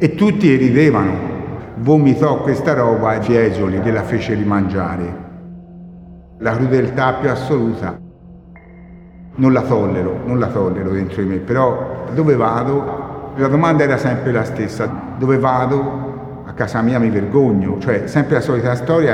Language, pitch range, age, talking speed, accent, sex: Italian, 100-140 Hz, 60-79, 145 wpm, native, male